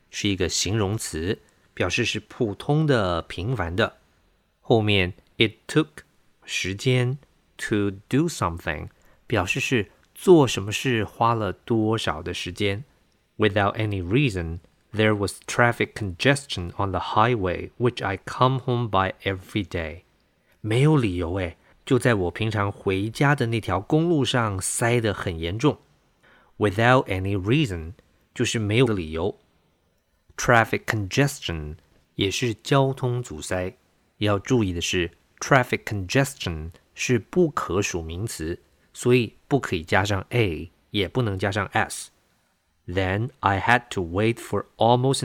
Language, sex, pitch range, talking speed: English, male, 90-120 Hz, 50 wpm